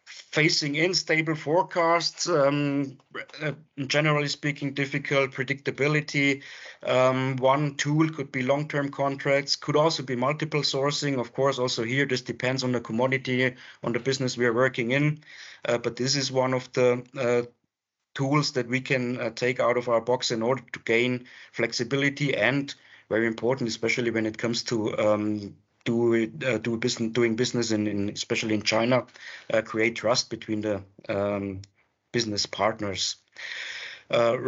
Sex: male